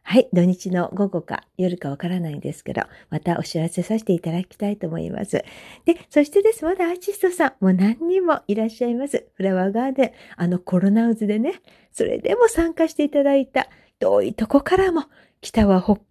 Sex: female